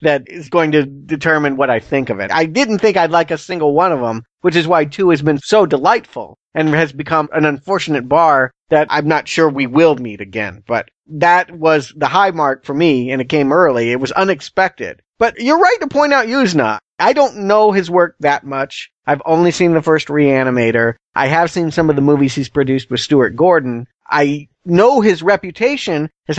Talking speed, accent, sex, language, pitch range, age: 215 wpm, American, male, English, 135-175 Hz, 40-59